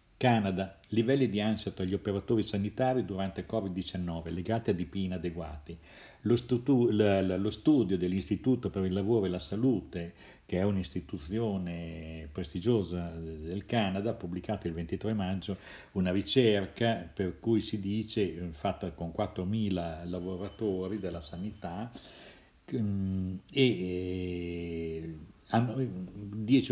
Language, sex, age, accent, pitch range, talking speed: Italian, male, 50-69, native, 90-110 Hz, 115 wpm